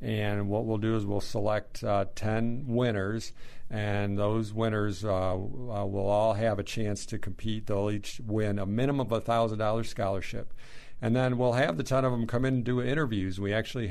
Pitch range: 100-115 Hz